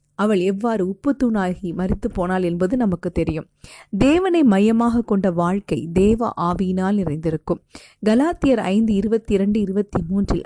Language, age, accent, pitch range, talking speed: Tamil, 30-49, native, 180-230 Hz, 115 wpm